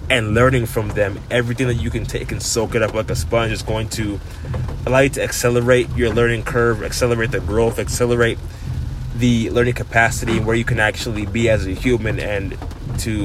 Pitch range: 105-120 Hz